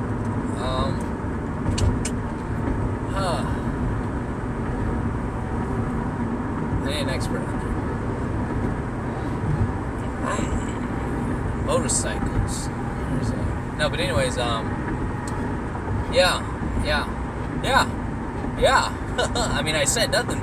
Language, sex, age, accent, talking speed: English, male, 20-39, American, 65 wpm